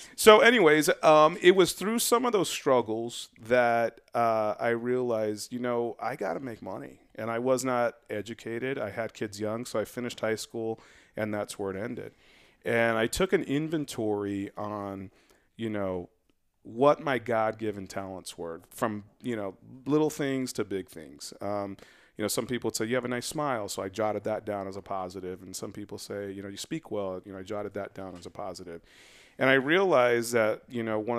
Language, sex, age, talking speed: English, male, 30-49, 205 wpm